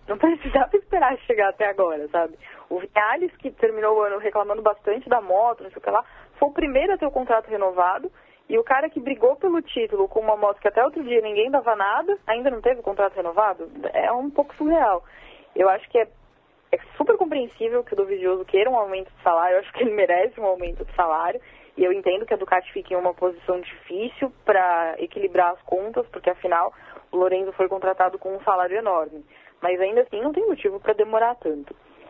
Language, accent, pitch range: Portuguese, Brazilian, 175-250 Hz